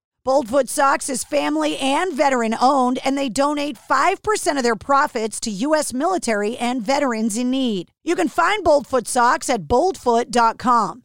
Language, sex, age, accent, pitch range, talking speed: English, female, 40-59, American, 240-305 Hz, 145 wpm